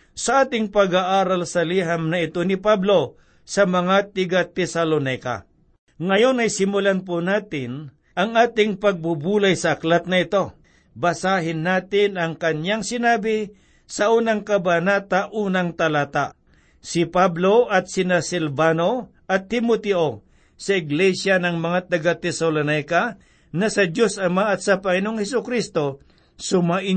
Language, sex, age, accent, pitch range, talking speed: Filipino, male, 60-79, native, 165-205 Hz, 125 wpm